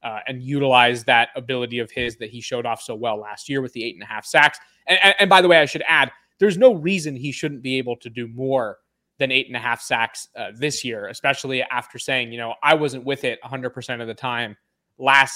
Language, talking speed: English, 250 wpm